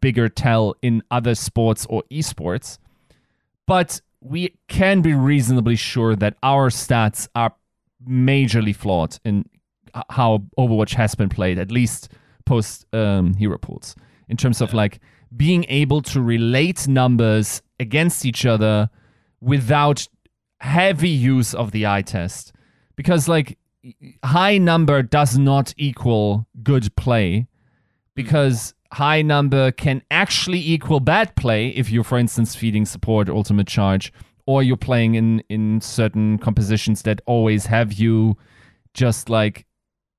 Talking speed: 130 wpm